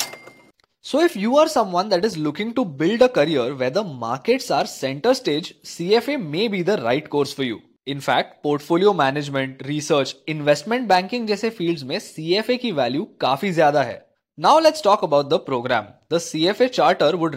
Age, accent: 20-39, native